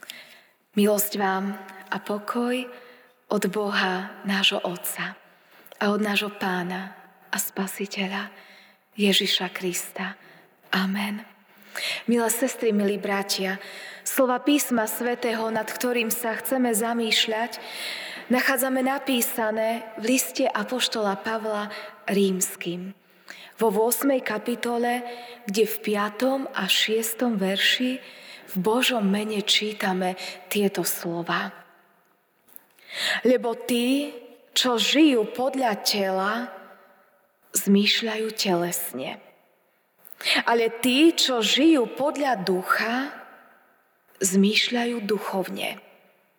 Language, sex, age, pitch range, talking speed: Slovak, female, 20-39, 195-240 Hz, 85 wpm